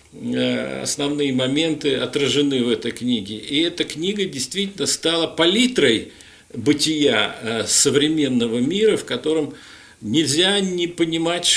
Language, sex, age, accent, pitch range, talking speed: Russian, male, 50-69, native, 145-185 Hz, 105 wpm